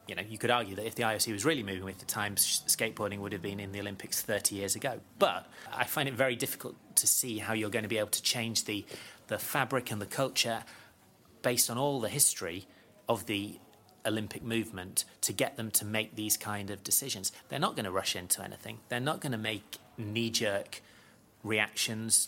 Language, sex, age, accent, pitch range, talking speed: English, male, 30-49, British, 100-120 Hz, 215 wpm